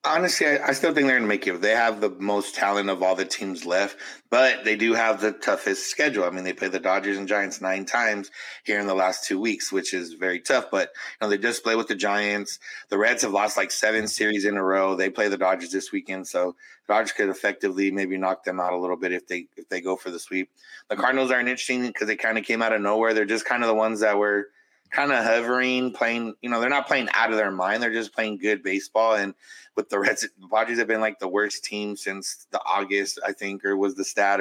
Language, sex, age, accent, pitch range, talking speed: English, male, 30-49, American, 95-110 Hz, 260 wpm